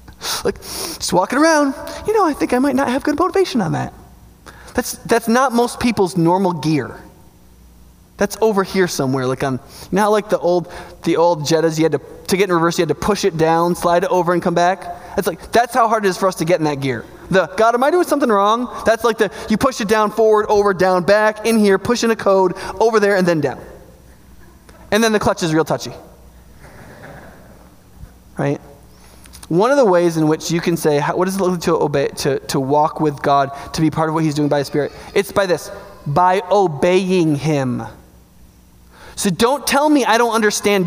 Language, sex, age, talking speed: English, male, 20-39, 220 wpm